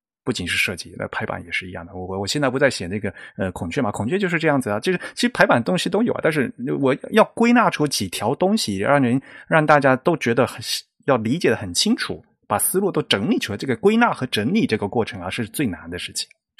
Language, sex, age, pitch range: Chinese, male, 30-49, 120-175 Hz